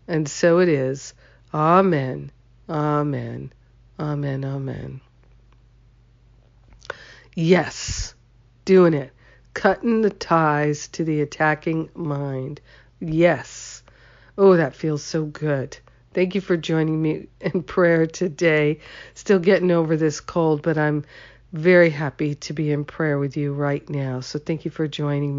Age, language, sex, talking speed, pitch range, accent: 50-69, English, female, 130 wpm, 145-175 Hz, American